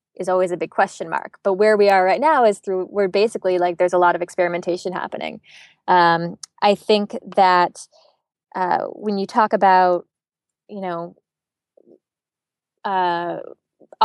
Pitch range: 180-230 Hz